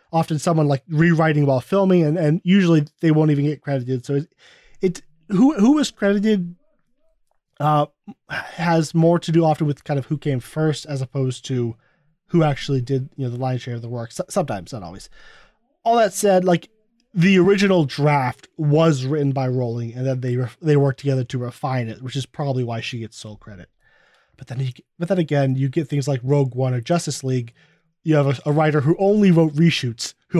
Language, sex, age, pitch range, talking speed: English, male, 20-39, 135-170 Hz, 210 wpm